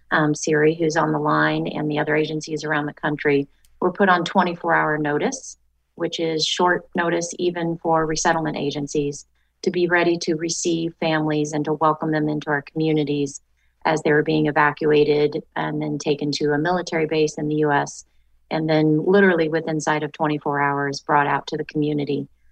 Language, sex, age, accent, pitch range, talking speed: English, female, 30-49, American, 150-175 Hz, 180 wpm